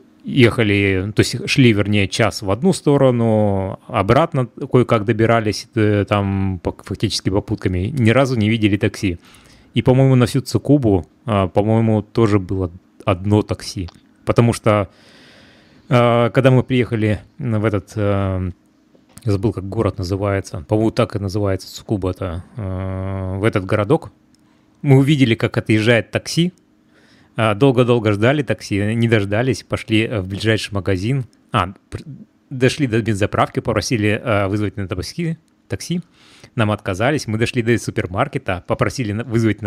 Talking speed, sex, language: 120 wpm, male, Russian